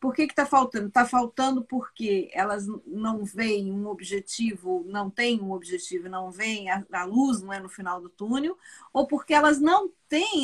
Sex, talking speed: female, 170 wpm